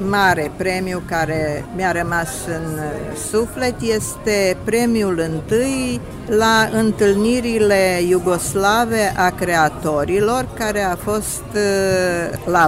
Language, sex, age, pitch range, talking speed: Romanian, female, 50-69, 170-205 Hz, 90 wpm